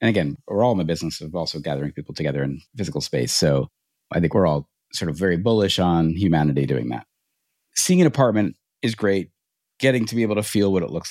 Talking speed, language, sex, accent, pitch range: 225 wpm, English, male, American, 90-115 Hz